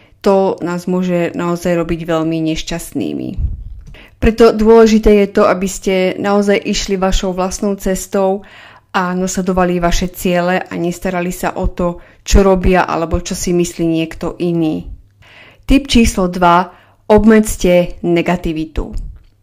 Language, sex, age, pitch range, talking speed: Slovak, female, 30-49, 170-195 Hz, 125 wpm